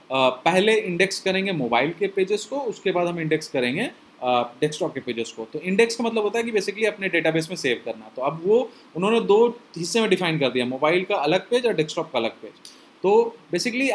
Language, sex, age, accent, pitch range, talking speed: Hindi, male, 30-49, native, 150-200 Hz, 225 wpm